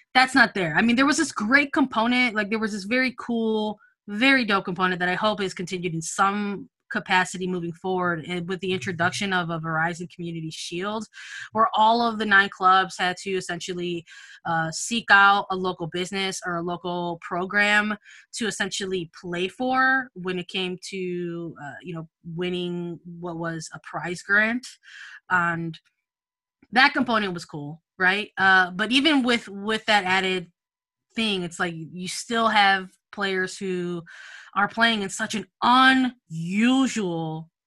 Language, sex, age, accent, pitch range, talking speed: English, female, 20-39, American, 175-220 Hz, 160 wpm